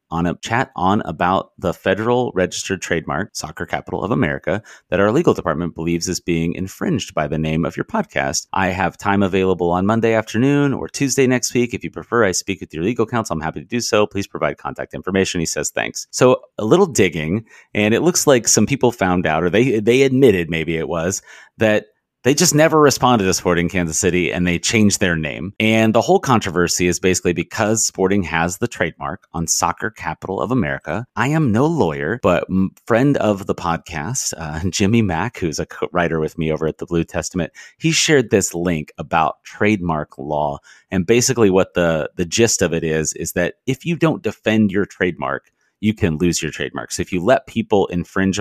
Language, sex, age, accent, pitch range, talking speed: English, male, 30-49, American, 85-110 Hz, 205 wpm